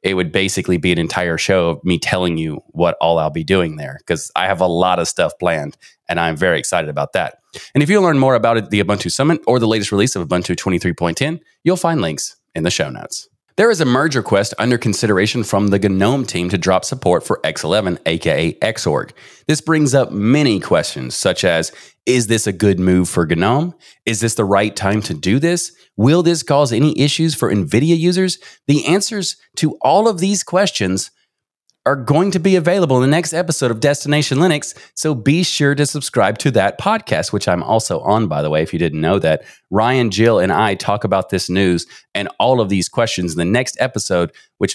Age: 30-49